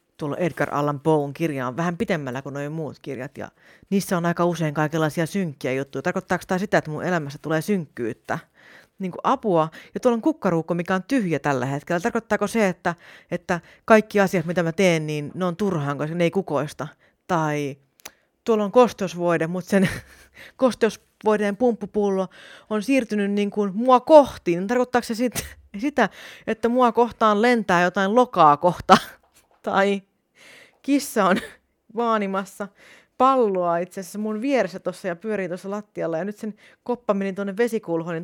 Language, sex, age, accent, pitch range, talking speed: Finnish, female, 30-49, native, 155-210 Hz, 160 wpm